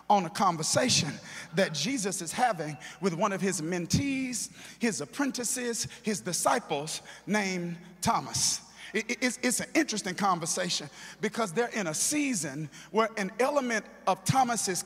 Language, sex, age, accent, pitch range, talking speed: English, male, 50-69, American, 175-240 Hz, 130 wpm